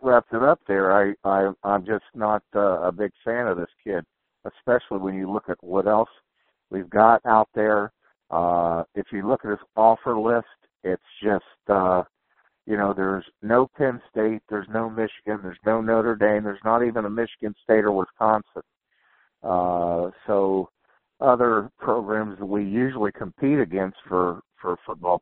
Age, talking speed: 60-79, 170 wpm